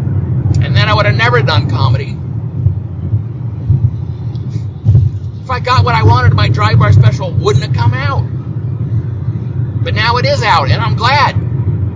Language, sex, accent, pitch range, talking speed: English, male, American, 115-125 Hz, 150 wpm